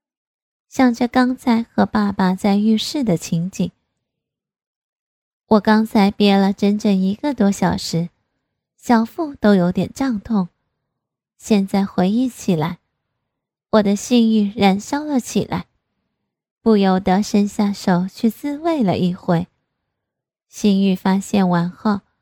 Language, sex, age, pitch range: Chinese, female, 20-39, 190-235 Hz